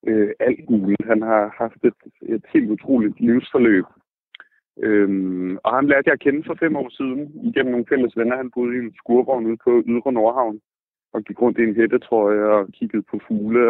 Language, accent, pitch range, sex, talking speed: Danish, native, 110-130 Hz, male, 195 wpm